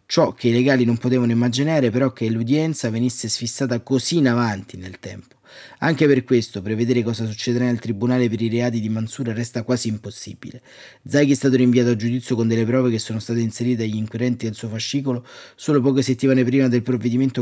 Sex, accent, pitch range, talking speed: male, native, 115-130 Hz, 195 wpm